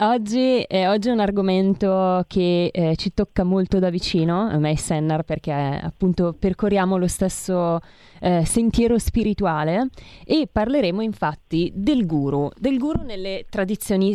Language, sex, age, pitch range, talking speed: Italian, female, 20-39, 175-210 Hz, 145 wpm